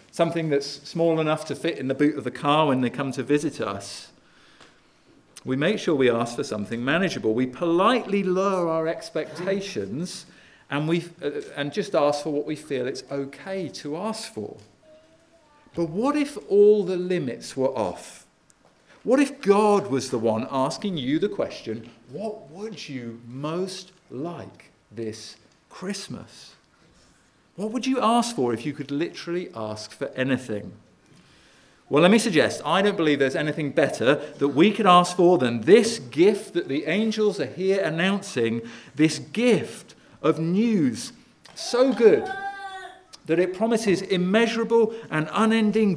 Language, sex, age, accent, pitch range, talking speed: English, male, 50-69, British, 135-205 Hz, 155 wpm